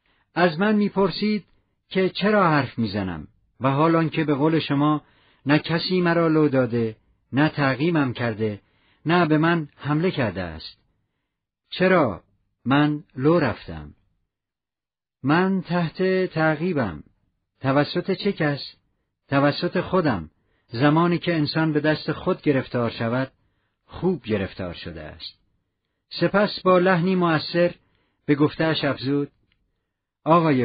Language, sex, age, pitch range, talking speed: English, male, 50-69, 105-175 Hz, 115 wpm